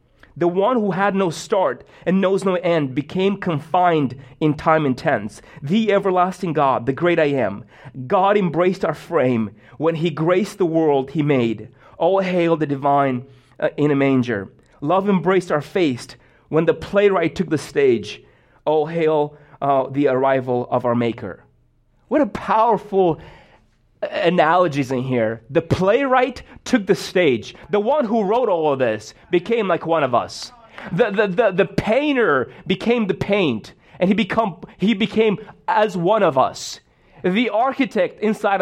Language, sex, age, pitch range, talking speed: English, male, 30-49, 145-215 Hz, 160 wpm